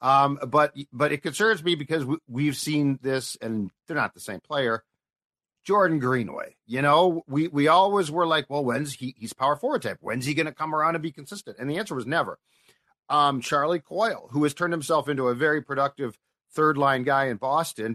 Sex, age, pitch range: male, 50-69, 130-160 Hz